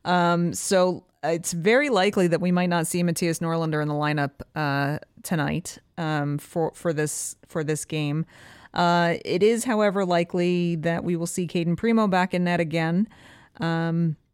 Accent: American